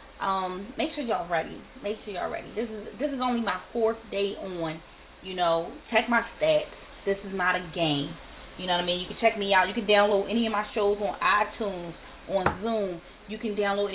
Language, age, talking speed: English, 20-39, 225 wpm